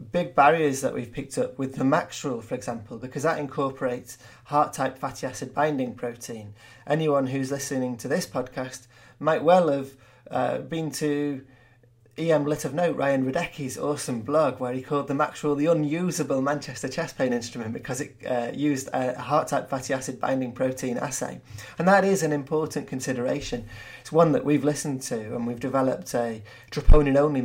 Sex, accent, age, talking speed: male, British, 30-49, 180 wpm